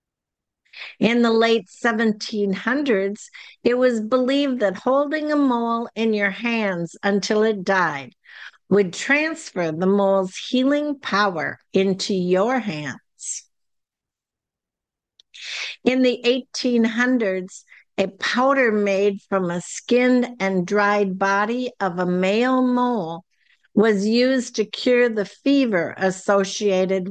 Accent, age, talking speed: American, 60-79, 110 wpm